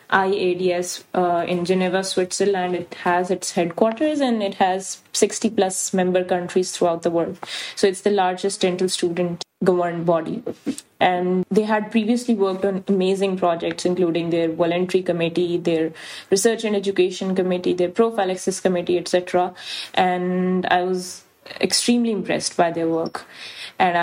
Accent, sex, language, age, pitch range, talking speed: Indian, female, English, 20-39, 180-200 Hz, 145 wpm